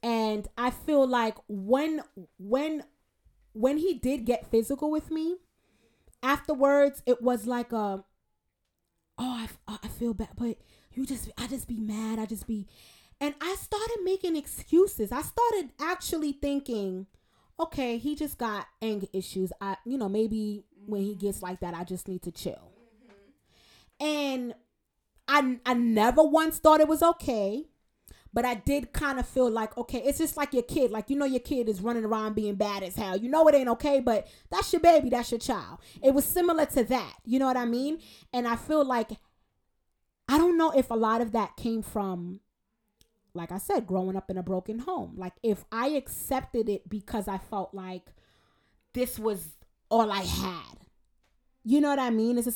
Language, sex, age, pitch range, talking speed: English, female, 20-39, 210-280 Hz, 185 wpm